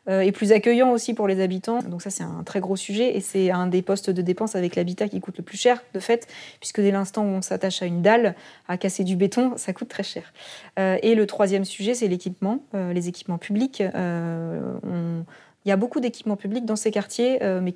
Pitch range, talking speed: 185-215 Hz, 245 wpm